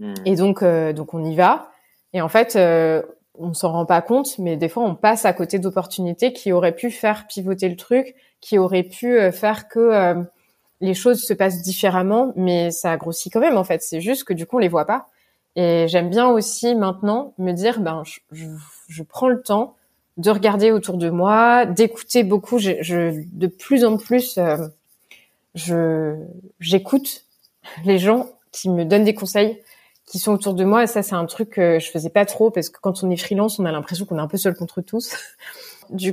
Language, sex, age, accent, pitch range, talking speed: French, female, 20-39, French, 175-225 Hz, 210 wpm